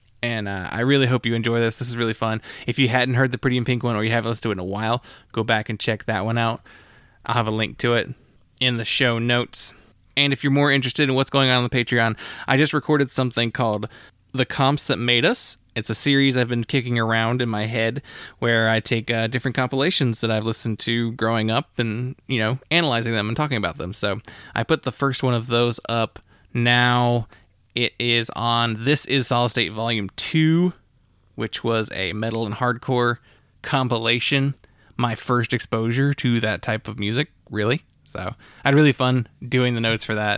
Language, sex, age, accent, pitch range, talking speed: English, male, 20-39, American, 110-130 Hz, 215 wpm